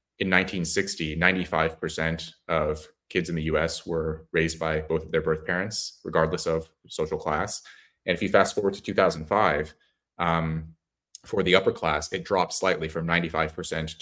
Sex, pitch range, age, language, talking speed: male, 80-90 Hz, 30-49, English, 160 wpm